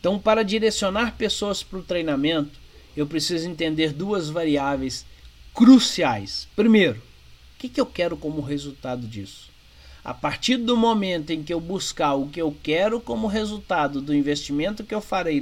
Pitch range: 140-210 Hz